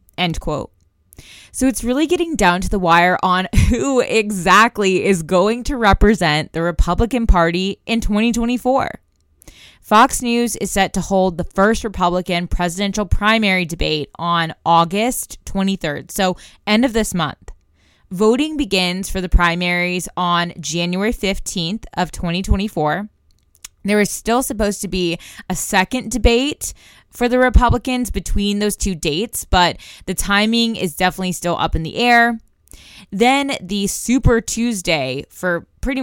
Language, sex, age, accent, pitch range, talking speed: English, female, 20-39, American, 175-215 Hz, 140 wpm